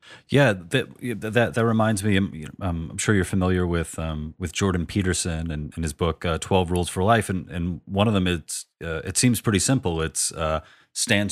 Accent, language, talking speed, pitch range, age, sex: American, English, 205 wpm, 85-110 Hz, 30-49, male